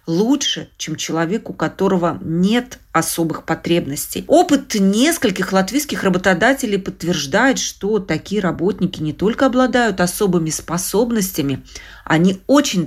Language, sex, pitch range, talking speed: Russian, female, 170-225 Hz, 105 wpm